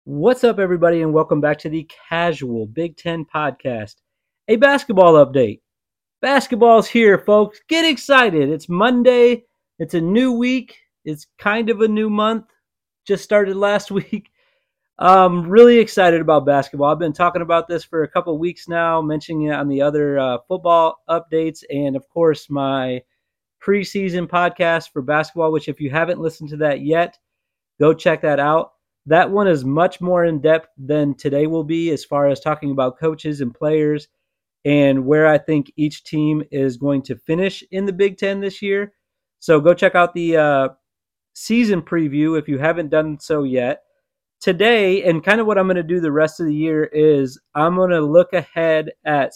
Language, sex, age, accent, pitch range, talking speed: English, male, 30-49, American, 150-190 Hz, 180 wpm